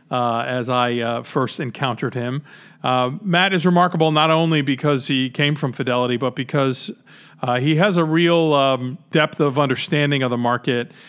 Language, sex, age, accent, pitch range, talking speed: English, male, 40-59, American, 125-155 Hz, 175 wpm